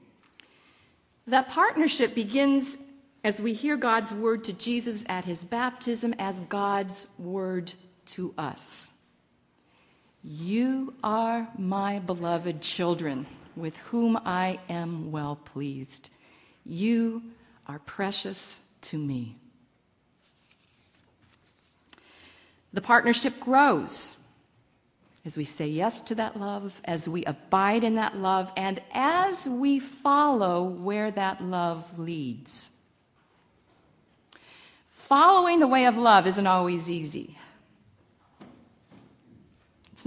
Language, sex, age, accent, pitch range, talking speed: English, female, 50-69, American, 170-235 Hz, 100 wpm